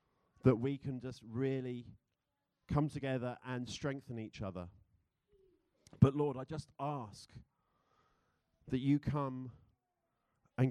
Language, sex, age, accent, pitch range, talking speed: English, male, 40-59, British, 110-135 Hz, 110 wpm